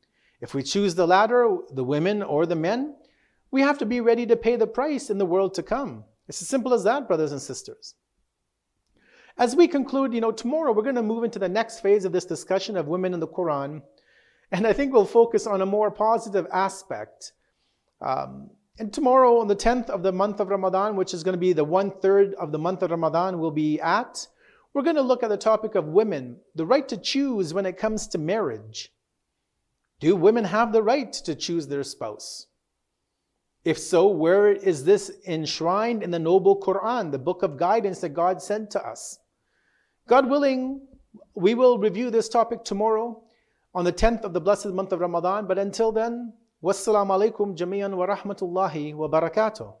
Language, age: English, 40-59